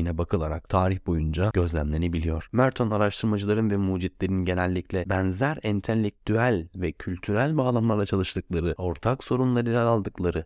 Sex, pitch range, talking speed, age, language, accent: male, 85-110 Hz, 110 wpm, 30-49, Turkish, native